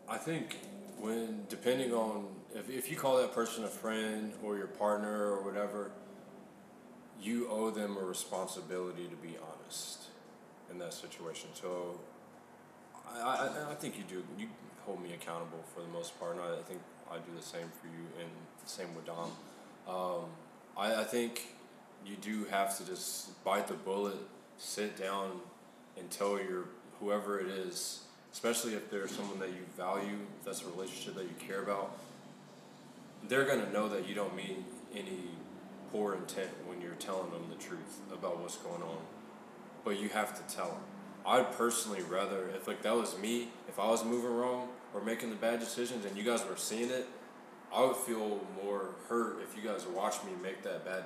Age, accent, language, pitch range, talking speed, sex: 20-39, American, English, 95-115 Hz, 185 wpm, male